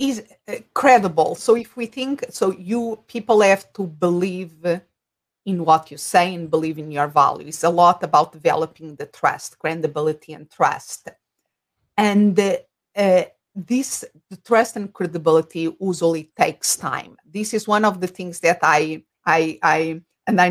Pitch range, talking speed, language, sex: 170-215 Hz, 160 wpm, English, female